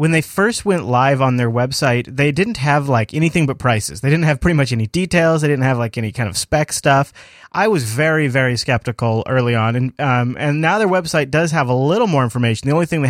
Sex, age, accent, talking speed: male, 30-49, American, 245 wpm